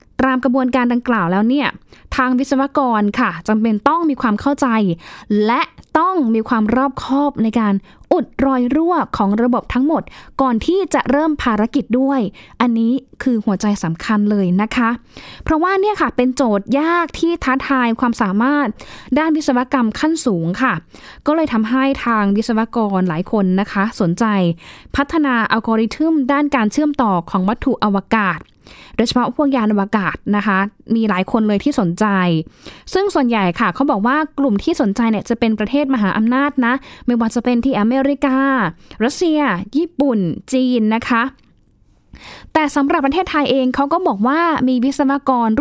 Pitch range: 210-275 Hz